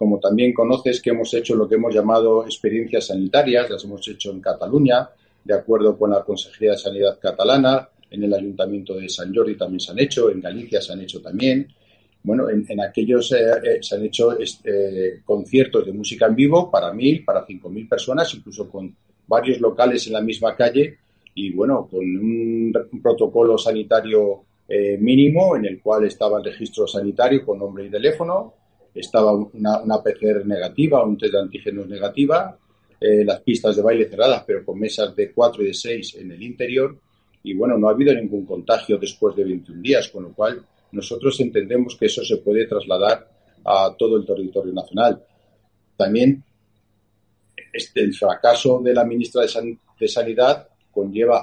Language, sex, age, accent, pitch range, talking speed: Spanish, male, 40-59, Spanish, 105-140 Hz, 180 wpm